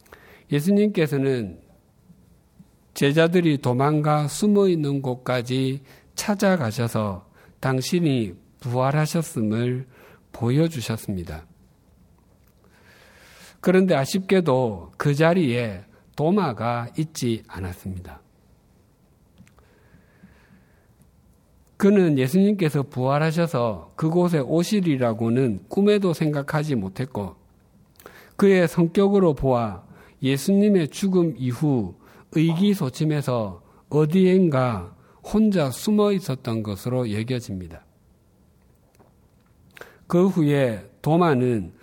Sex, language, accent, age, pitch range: male, Korean, native, 50-69, 115-165 Hz